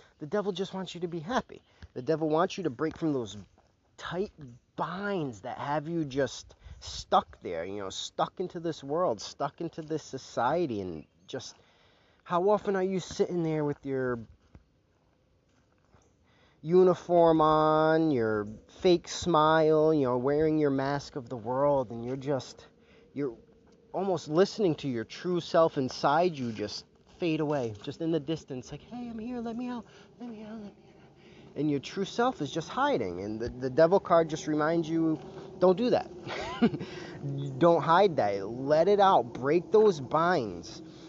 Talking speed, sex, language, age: 170 wpm, male, English, 30-49